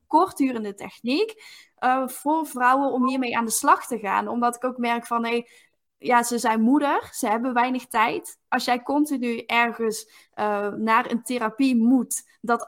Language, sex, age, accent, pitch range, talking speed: Dutch, female, 10-29, Dutch, 230-290 Hz, 160 wpm